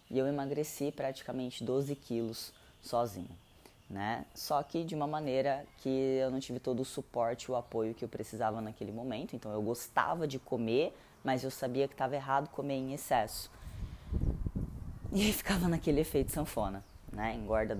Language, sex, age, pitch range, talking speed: Portuguese, female, 20-39, 110-135 Hz, 160 wpm